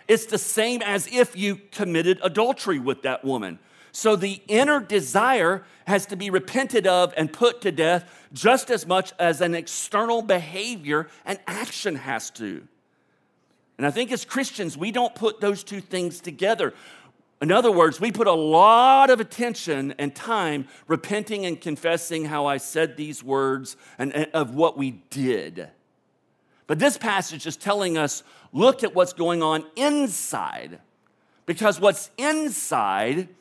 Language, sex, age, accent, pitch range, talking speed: English, male, 50-69, American, 140-205 Hz, 155 wpm